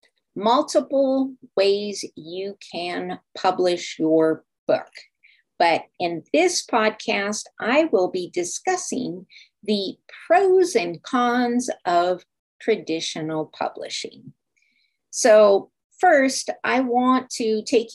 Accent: American